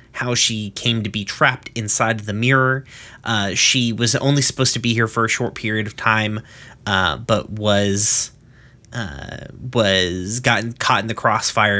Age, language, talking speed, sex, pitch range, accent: 30-49, English, 175 wpm, male, 105-130 Hz, American